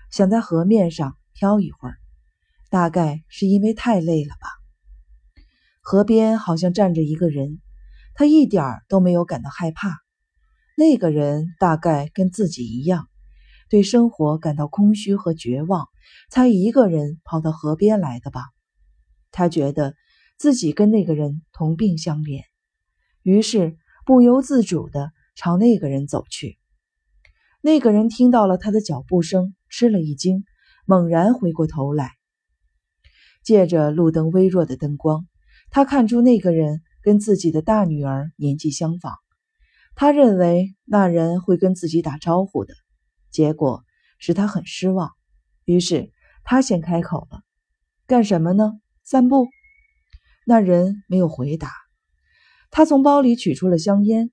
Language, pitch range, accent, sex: Chinese, 155-225 Hz, native, female